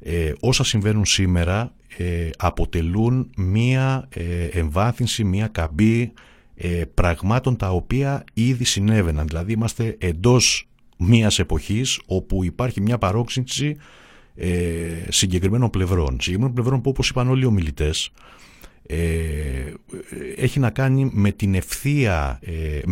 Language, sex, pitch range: Greek, male, 85-110 Hz